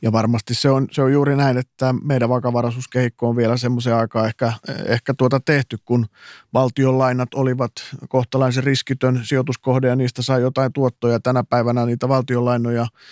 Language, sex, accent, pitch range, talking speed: Finnish, male, native, 115-135 Hz, 155 wpm